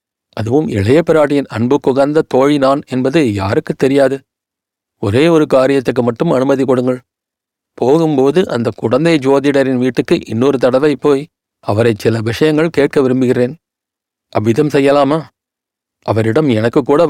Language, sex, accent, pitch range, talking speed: Tamil, male, native, 120-145 Hz, 115 wpm